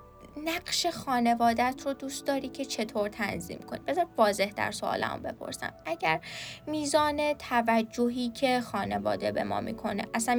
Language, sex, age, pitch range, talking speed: Persian, female, 10-29, 210-260 Hz, 135 wpm